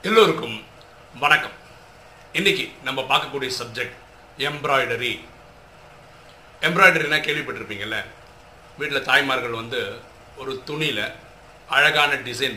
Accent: native